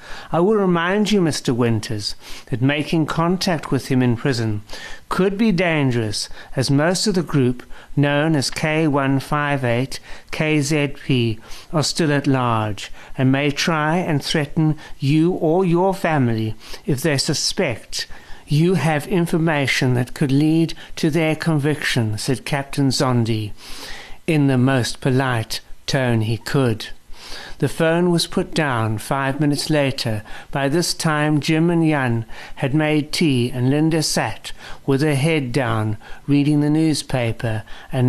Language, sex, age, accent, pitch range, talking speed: English, male, 60-79, British, 125-160 Hz, 140 wpm